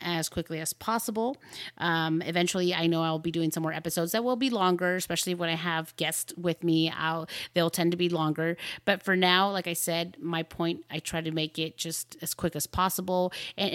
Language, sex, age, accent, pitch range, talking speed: English, female, 30-49, American, 160-185 Hz, 220 wpm